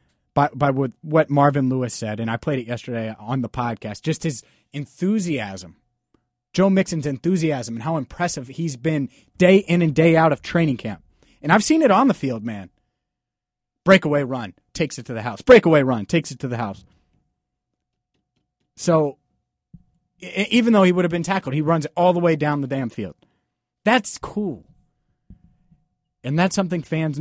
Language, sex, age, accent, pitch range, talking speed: English, male, 30-49, American, 125-175 Hz, 175 wpm